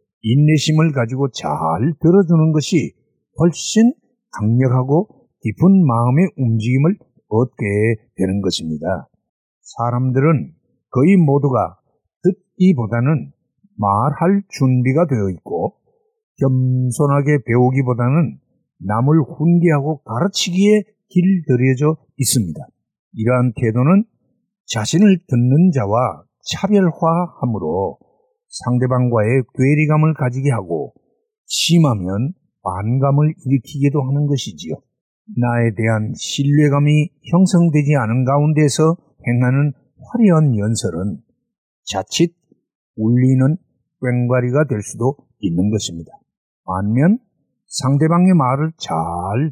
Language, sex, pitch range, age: Korean, male, 125-170 Hz, 50-69